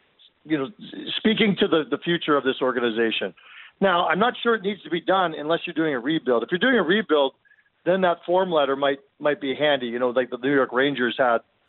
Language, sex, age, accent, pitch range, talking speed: English, male, 50-69, American, 130-165 Hz, 230 wpm